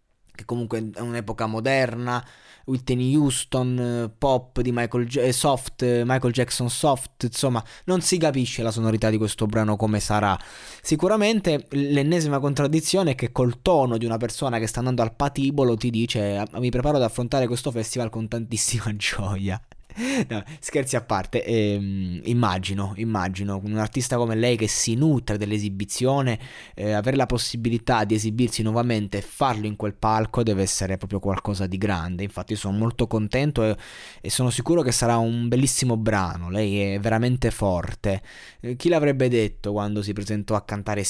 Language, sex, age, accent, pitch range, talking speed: Italian, male, 20-39, native, 105-130 Hz, 160 wpm